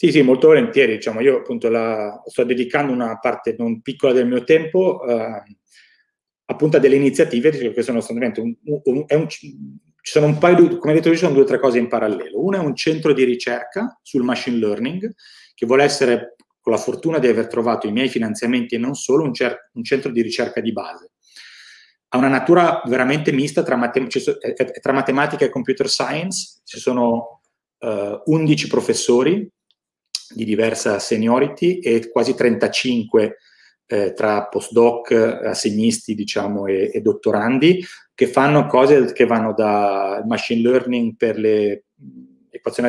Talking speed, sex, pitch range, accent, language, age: 155 wpm, male, 115-155 Hz, native, Italian, 30-49